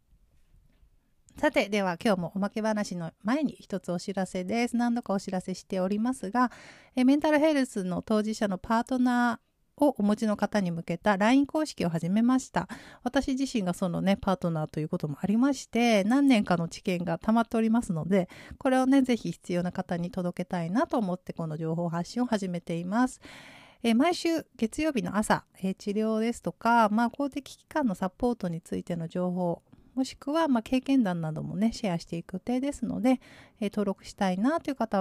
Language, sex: Japanese, female